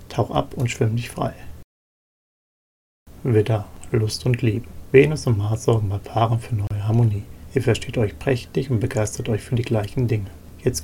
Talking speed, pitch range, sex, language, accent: 170 wpm, 105-120 Hz, male, German, German